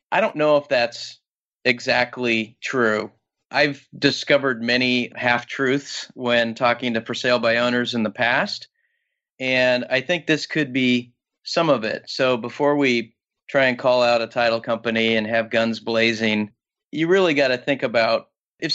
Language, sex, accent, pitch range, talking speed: English, male, American, 115-140 Hz, 165 wpm